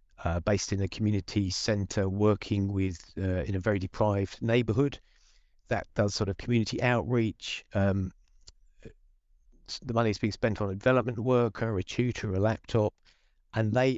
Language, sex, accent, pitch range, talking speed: English, male, British, 100-120 Hz, 155 wpm